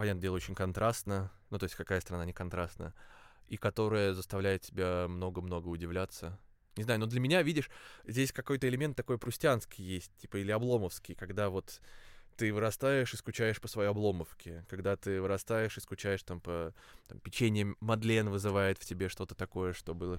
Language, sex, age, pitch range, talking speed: Russian, male, 20-39, 90-115 Hz, 170 wpm